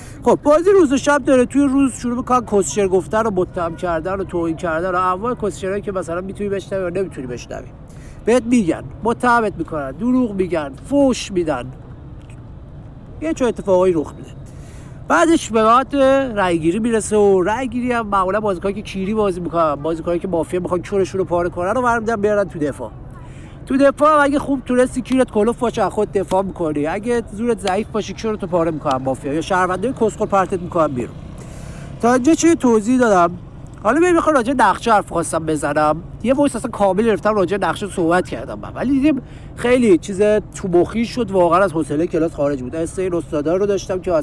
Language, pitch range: Persian, 170-235 Hz